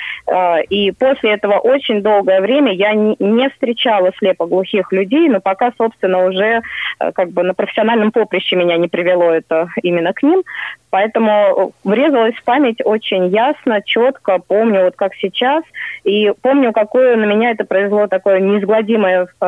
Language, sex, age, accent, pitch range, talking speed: Russian, female, 20-39, native, 180-220 Hz, 150 wpm